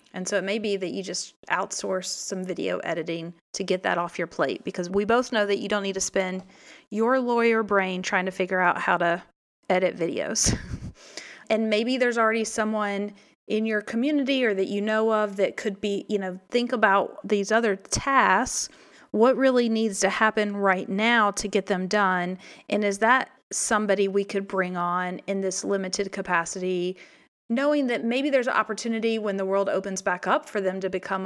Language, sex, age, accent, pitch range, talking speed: English, female, 30-49, American, 190-225 Hz, 195 wpm